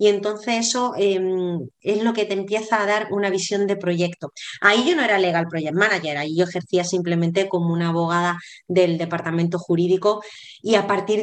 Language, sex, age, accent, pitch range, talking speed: Spanish, female, 20-39, Spanish, 180-210 Hz, 185 wpm